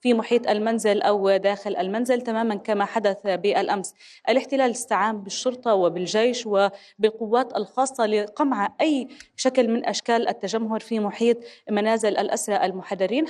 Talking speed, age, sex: 120 wpm, 20-39, female